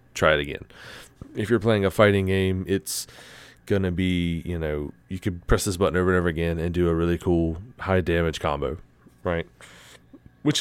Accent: American